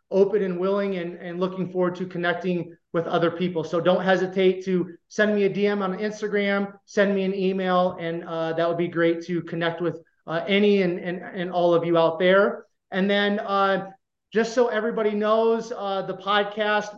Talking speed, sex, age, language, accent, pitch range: 195 wpm, male, 30-49, English, American, 170-195 Hz